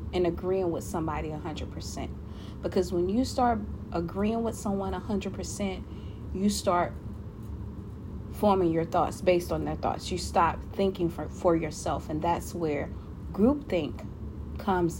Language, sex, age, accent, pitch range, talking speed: English, female, 30-49, American, 175-235 Hz, 130 wpm